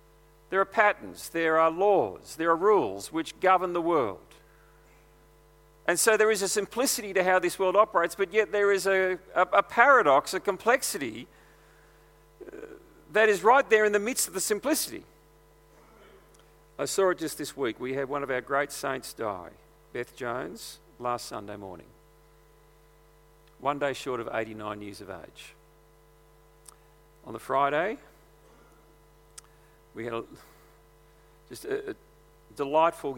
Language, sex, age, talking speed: English, male, 50-69, 145 wpm